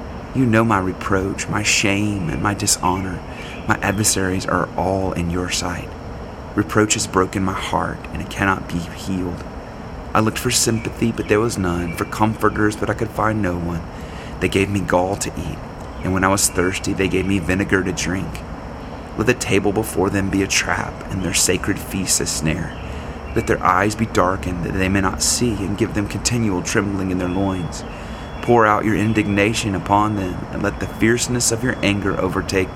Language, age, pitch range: English, 30-49, 90-105 Hz